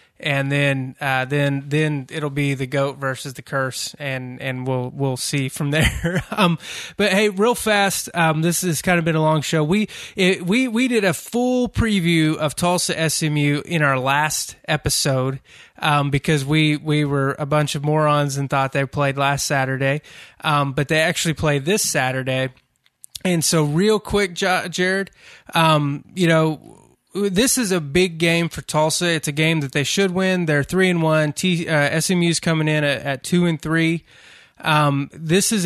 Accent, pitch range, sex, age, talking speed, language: American, 140-175 Hz, male, 20-39, 180 wpm, English